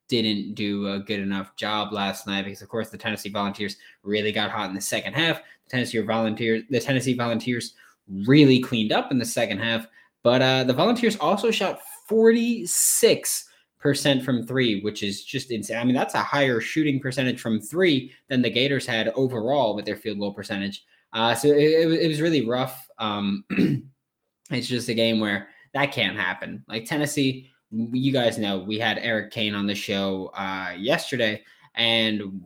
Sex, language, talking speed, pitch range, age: male, English, 175 wpm, 105-135 Hz, 20-39